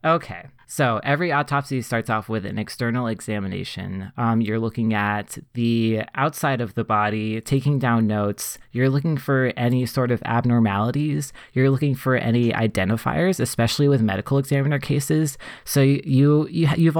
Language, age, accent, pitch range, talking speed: English, 20-39, American, 110-135 Hz, 145 wpm